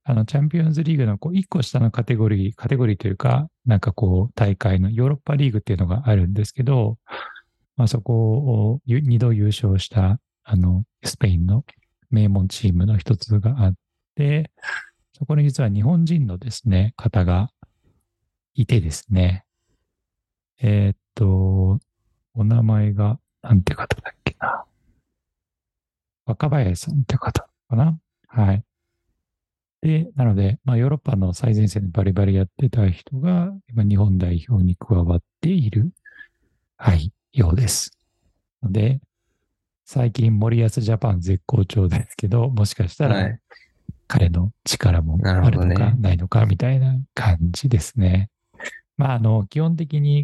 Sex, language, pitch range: male, Japanese, 95-125 Hz